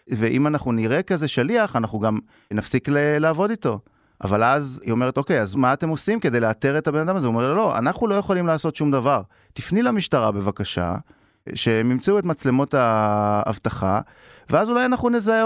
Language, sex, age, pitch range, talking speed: Hebrew, male, 30-49, 115-170 Hz, 180 wpm